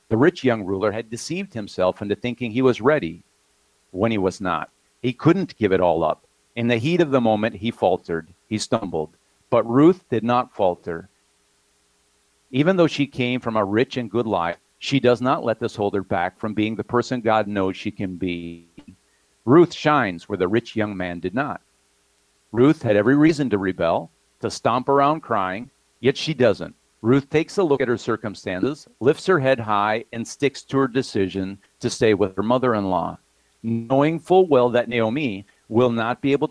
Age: 50-69